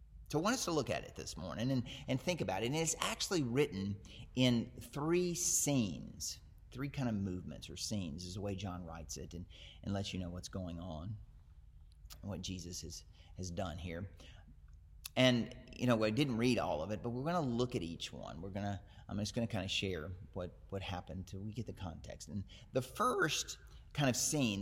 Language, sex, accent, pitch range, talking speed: English, male, American, 85-115 Hz, 220 wpm